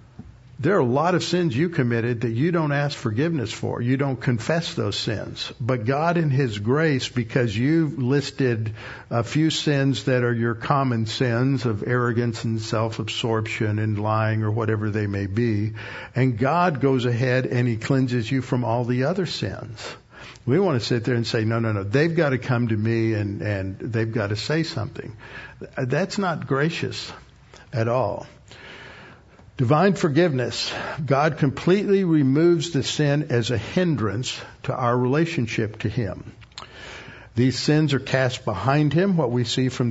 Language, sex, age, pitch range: English, male, 60-79, 115-140 Hz